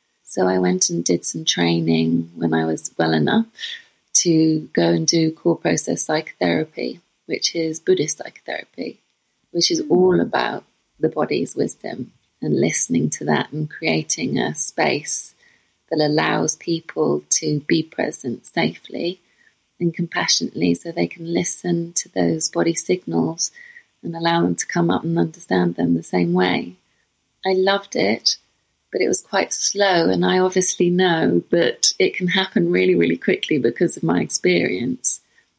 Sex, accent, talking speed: female, British, 150 wpm